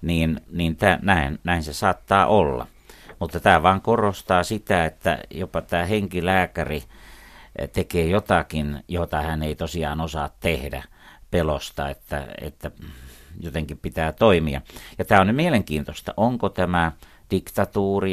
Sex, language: male, Finnish